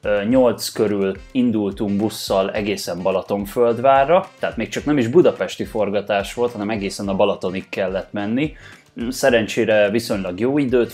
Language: Hungarian